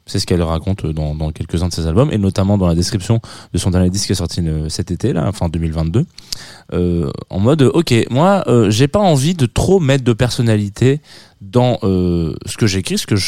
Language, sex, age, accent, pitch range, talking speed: French, male, 20-39, French, 95-135 Hz, 220 wpm